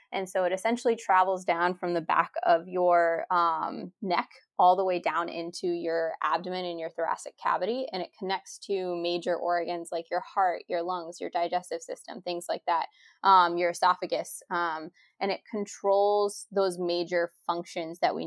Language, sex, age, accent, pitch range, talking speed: English, female, 20-39, American, 175-200 Hz, 175 wpm